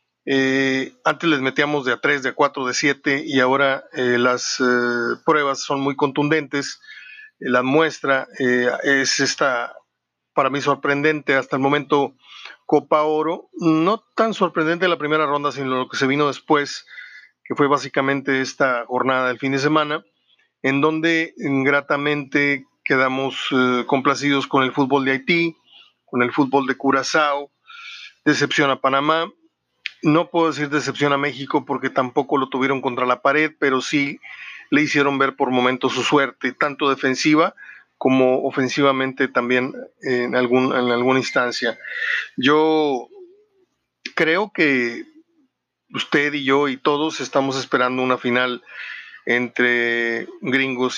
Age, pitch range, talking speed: 40-59, 130-150 Hz, 140 wpm